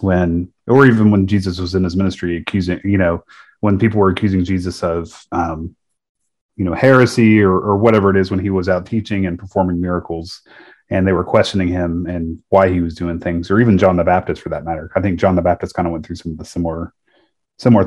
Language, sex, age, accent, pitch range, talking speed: English, male, 30-49, American, 90-105 Hz, 230 wpm